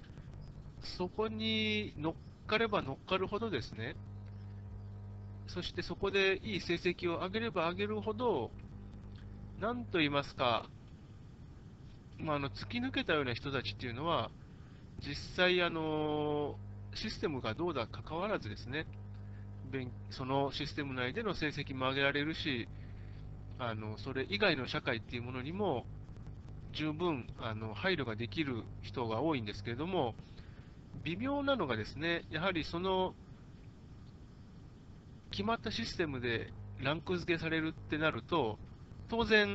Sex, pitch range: male, 105-170 Hz